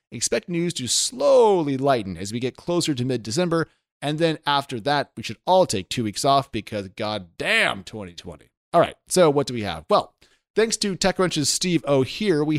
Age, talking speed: 30-49, 190 wpm